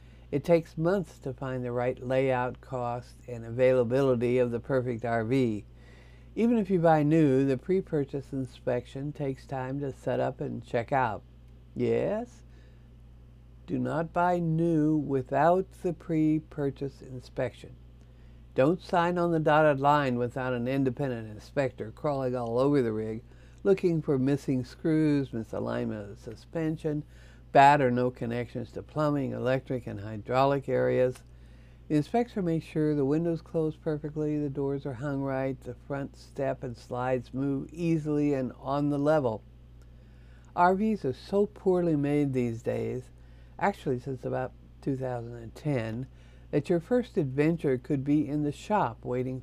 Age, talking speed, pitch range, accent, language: 60-79, 145 wpm, 120-150 Hz, American, English